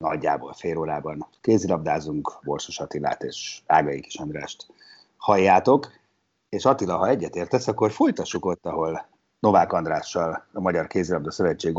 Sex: male